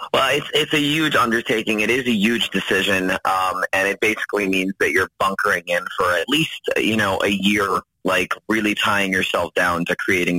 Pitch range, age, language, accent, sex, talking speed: 95-110 Hz, 30-49, English, American, male, 195 wpm